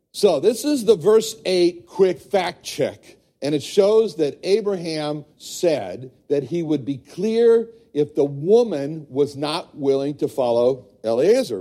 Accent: American